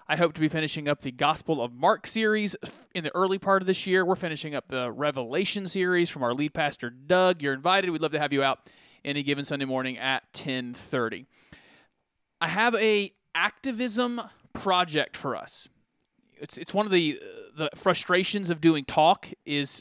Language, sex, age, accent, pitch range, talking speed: English, male, 30-49, American, 140-185 Hz, 185 wpm